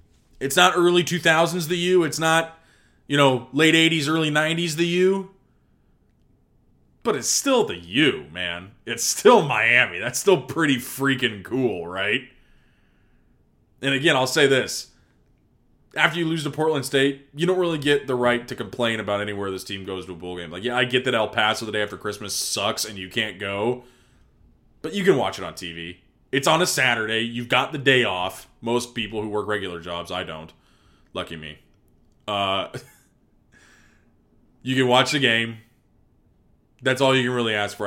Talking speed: 180 wpm